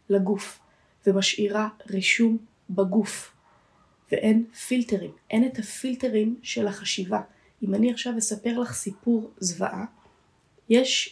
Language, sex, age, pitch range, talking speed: Hebrew, female, 20-39, 195-240 Hz, 105 wpm